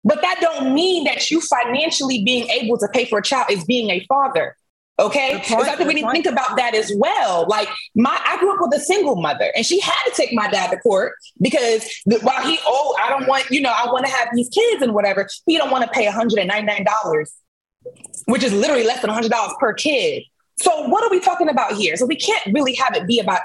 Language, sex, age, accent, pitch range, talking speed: English, female, 20-39, American, 220-300 Hz, 255 wpm